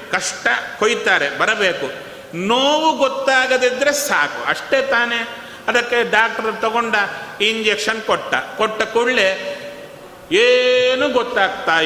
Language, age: Kannada, 30-49